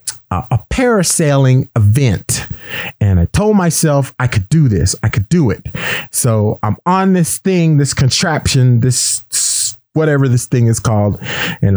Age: 40-59